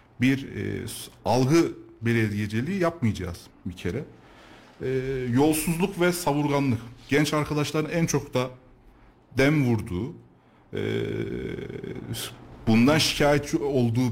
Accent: native